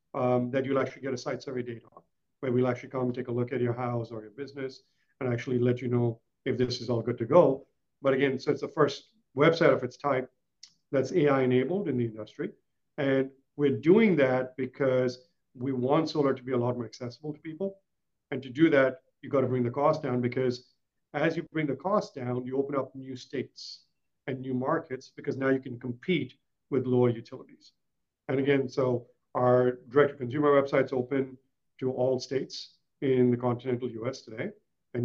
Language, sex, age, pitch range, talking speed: English, male, 50-69, 125-145 Hz, 200 wpm